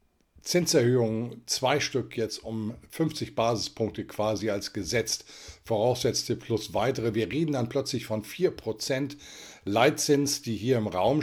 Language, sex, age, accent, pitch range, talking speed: German, male, 50-69, German, 110-135 Hz, 130 wpm